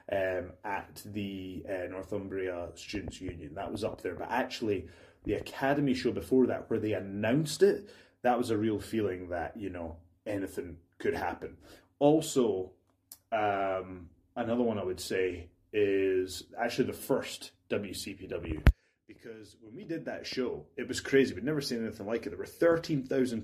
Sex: male